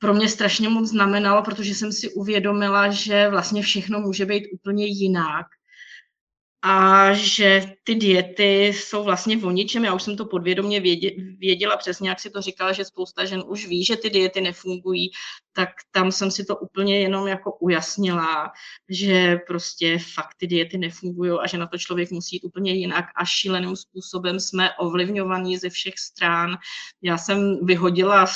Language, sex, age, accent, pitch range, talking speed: Czech, female, 20-39, native, 185-210 Hz, 165 wpm